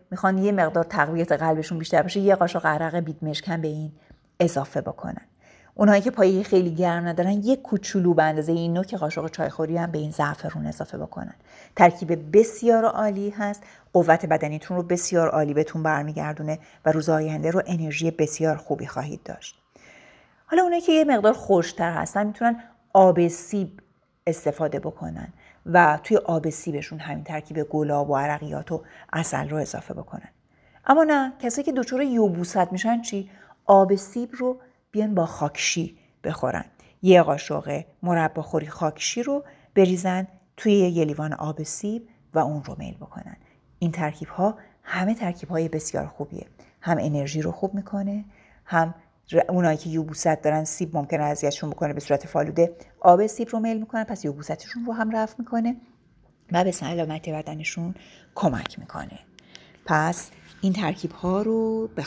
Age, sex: 30-49, female